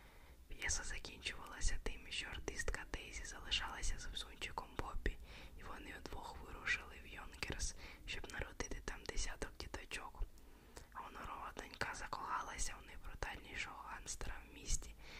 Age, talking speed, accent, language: 20-39, 120 wpm, native, Ukrainian